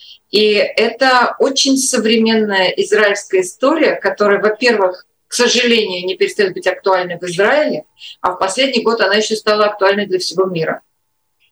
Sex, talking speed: female, 140 wpm